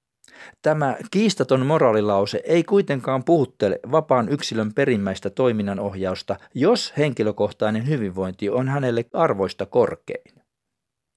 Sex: male